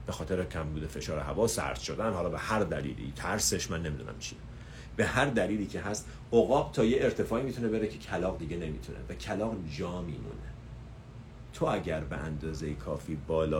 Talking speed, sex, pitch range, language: 175 wpm, male, 105-155 Hz, Persian